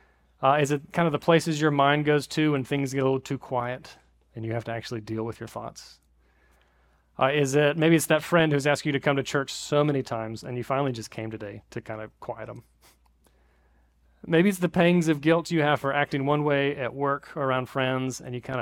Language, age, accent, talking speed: English, 30-49, American, 240 wpm